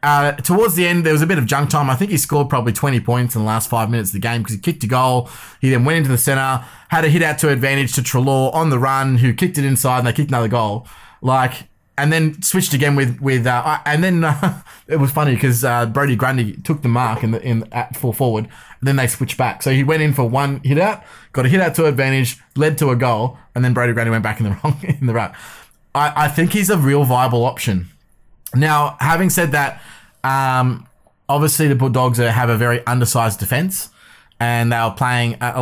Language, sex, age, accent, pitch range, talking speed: English, male, 20-39, Australian, 120-150 Hz, 245 wpm